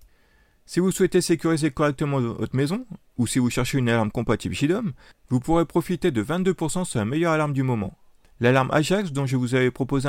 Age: 30-49